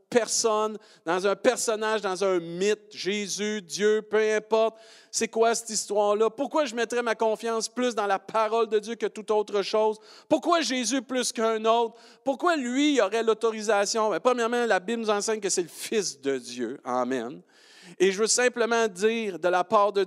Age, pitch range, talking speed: 50-69, 195-235 Hz, 180 wpm